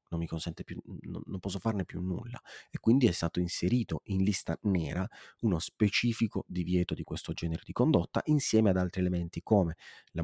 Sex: male